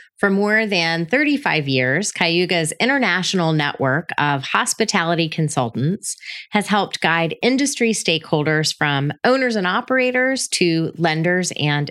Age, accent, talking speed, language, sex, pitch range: 30-49, American, 115 wpm, English, female, 160-220 Hz